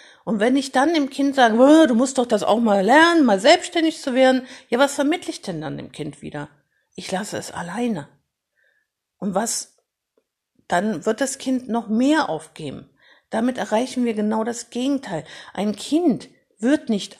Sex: female